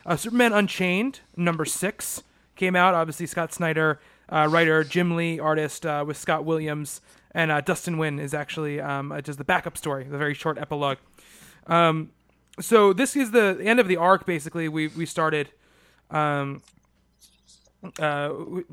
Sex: male